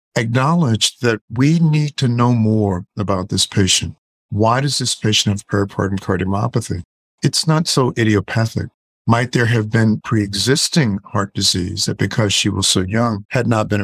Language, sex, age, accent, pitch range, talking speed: English, male, 50-69, American, 100-125 Hz, 160 wpm